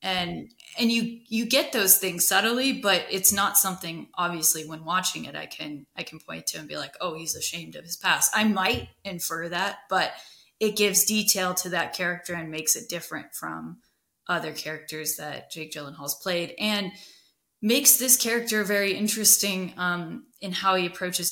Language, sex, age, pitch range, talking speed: English, female, 20-39, 155-195 Hz, 180 wpm